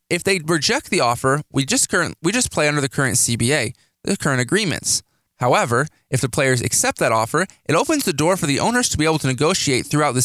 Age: 20-39